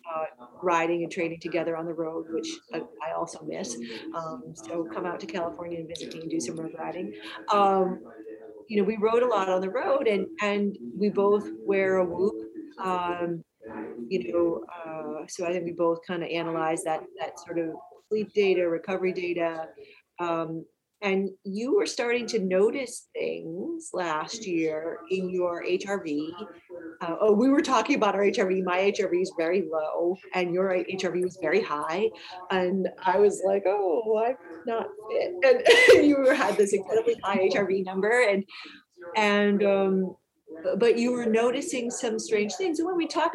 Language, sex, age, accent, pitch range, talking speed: English, female, 40-59, American, 170-215 Hz, 175 wpm